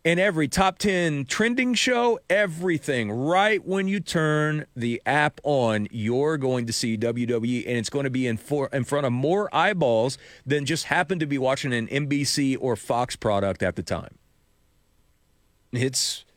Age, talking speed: 40-59, 170 wpm